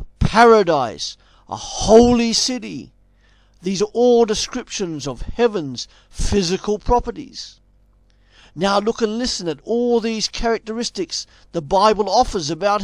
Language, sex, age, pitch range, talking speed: English, male, 50-69, 160-235 Hz, 110 wpm